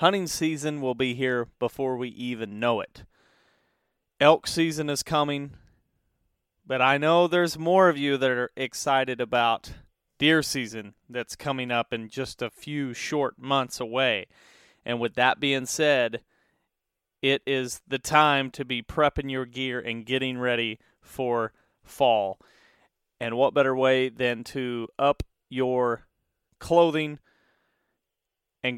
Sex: male